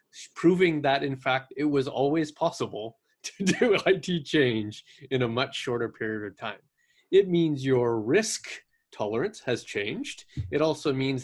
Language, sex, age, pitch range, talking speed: English, male, 20-39, 115-140 Hz, 155 wpm